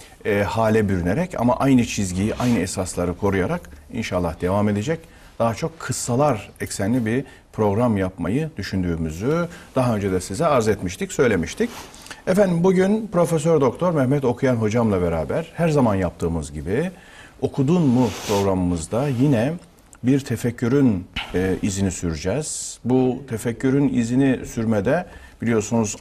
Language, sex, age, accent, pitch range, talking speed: Turkish, male, 50-69, native, 95-130 Hz, 120 wpm